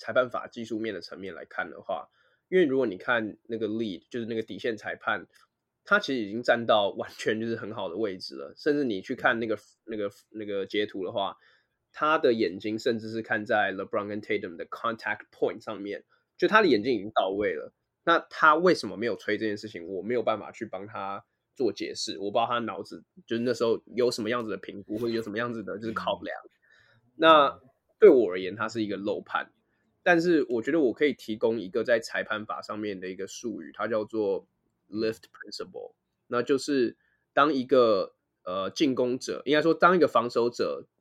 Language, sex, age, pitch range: Chinese, male, 20-39, 110-160 Hz